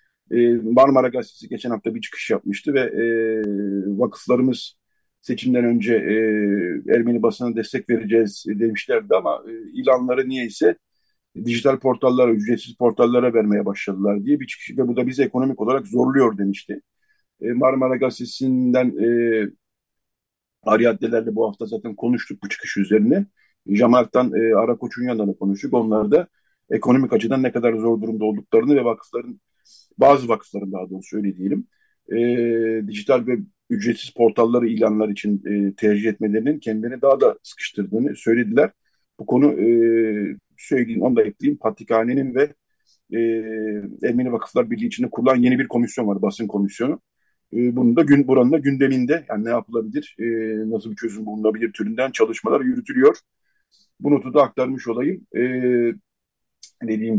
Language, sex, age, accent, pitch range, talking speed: Turkish, male, 50-69, native, 110-130 Hz, 140 wpm